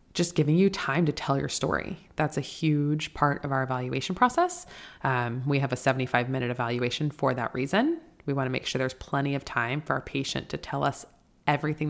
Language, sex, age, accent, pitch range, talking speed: English, female, 20-39, American, 135-155 Hz, 210 wpm